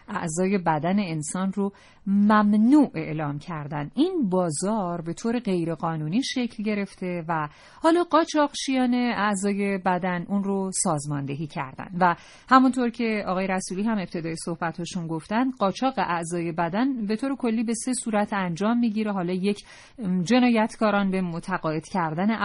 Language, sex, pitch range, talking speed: Persian, female, 175-230 Hz, 135 wpm